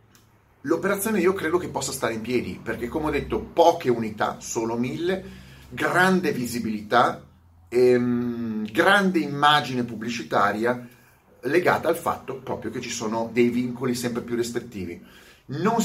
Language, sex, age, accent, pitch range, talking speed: Italian, male, 30-49, native, 110-165 Hz, 135 wpm